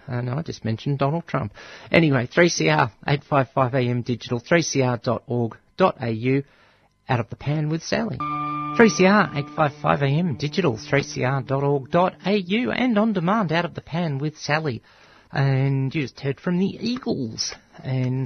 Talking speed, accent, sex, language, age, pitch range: 130 wpm, Australian, male, English, 40-59, 115-150 Hz